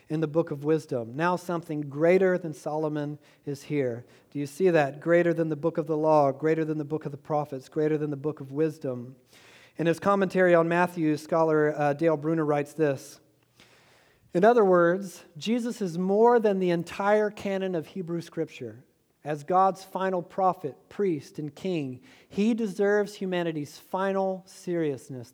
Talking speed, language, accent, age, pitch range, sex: 170 wpm, English, American, 40-59, 150-190 Hz, male